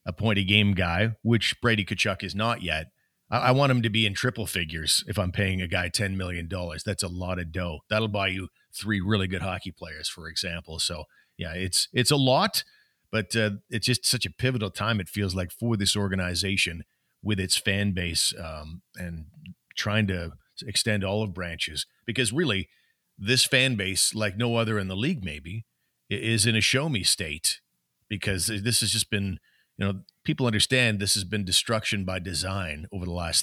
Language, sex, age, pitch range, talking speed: English, male, 40-59, 95-115 Hz, 195 wpm